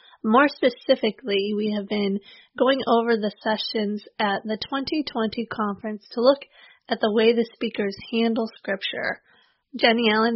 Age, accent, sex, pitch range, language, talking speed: 30-49, American, female, 210-255 Hz, English, 140 wpm